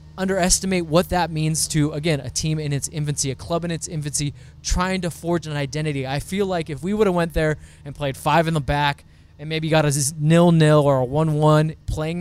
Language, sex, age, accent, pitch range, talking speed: English, male, 20-39, American, 140-185 Hz, 220 wpm